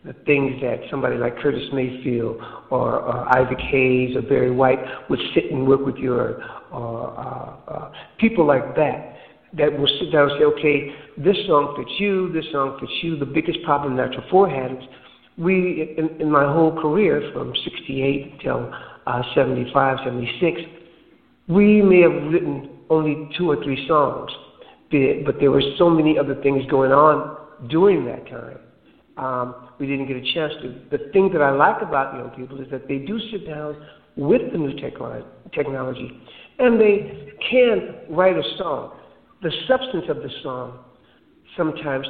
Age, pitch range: 60-79, 130-165 Hz